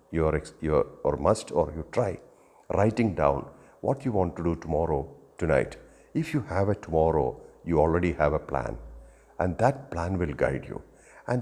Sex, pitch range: male, 90-125 Hz